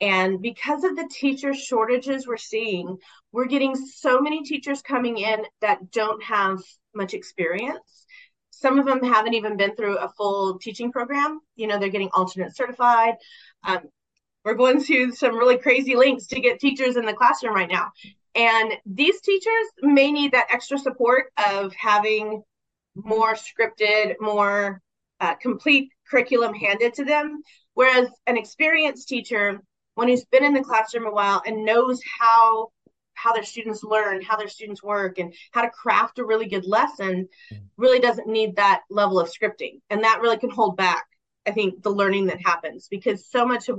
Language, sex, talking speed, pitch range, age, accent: English, female, 175 wpm, 205-255 Hz, 30-49, American